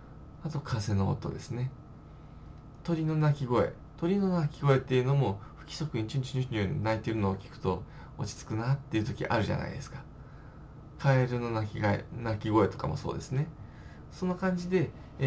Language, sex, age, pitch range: Japanese, male, 20-39, 110-160 Hz